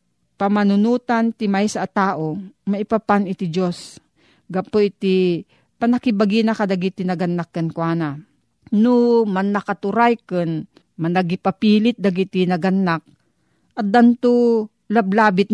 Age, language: 40-59, Filipino